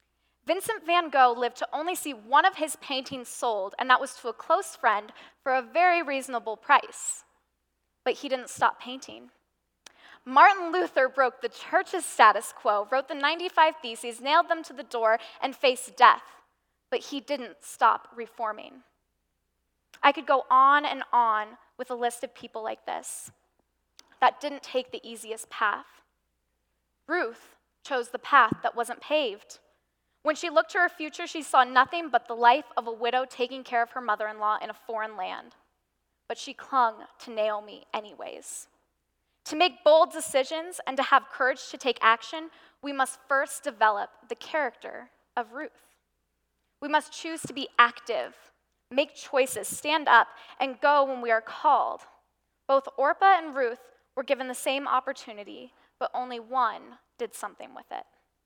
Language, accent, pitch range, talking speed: English, American, 235-310 Hz, 165 wpm